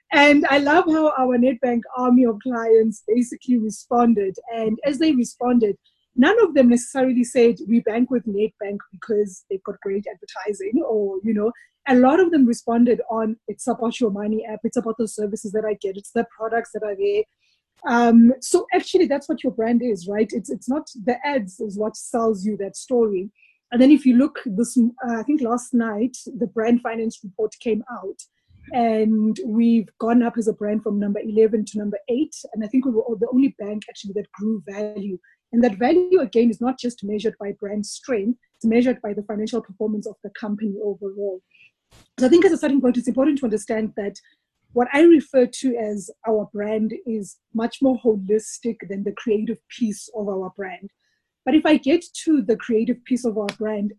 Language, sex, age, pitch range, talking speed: English, female, 20-39, 215-255 Hz, 200 wpm